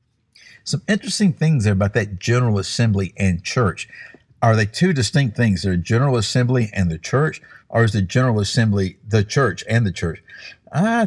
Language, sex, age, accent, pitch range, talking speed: English, male, 50-69, American, 100-135 Hz, 175 wpm